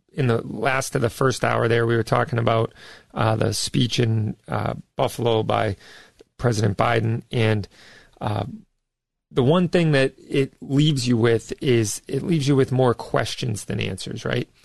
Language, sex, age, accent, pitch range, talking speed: English, male, 40-59, American, 110-135 Hz, 170 wpm